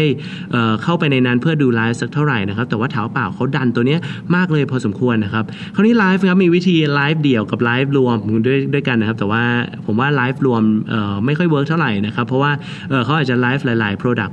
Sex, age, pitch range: male, 20-39, 130-175 Hz